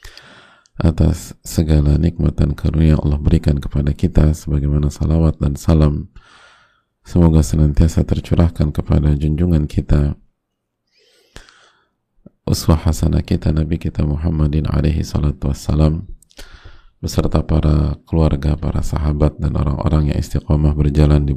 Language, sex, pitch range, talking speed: Indonesian, male, 75-80 Hz, 105 wpm